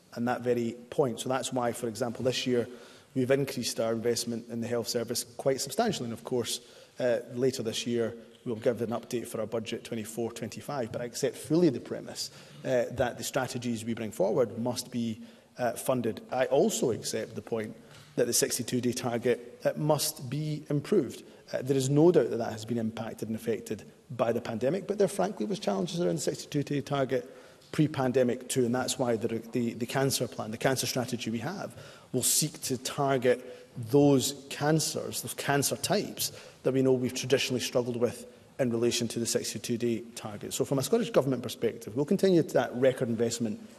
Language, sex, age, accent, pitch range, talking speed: English, male, 30-49, British, 120-135 Hz, 190 wpm